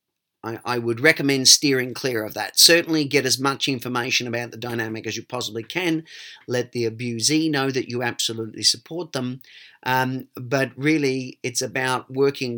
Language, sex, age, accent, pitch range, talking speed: English, male, 40-59, Australian, 115-130 Hz, 160 wpm